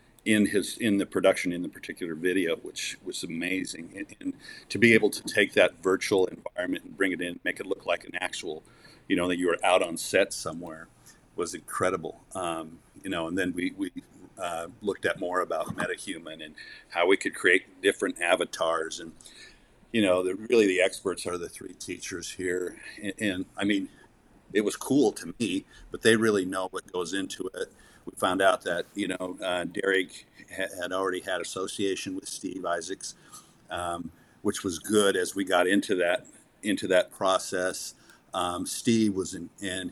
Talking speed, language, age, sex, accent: 190 wpm, English, 50-69, male, American